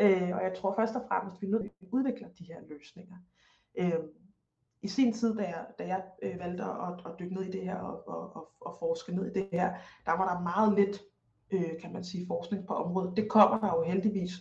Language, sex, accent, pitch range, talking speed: Danish, female, native, 180-225 Hz, 220 wpm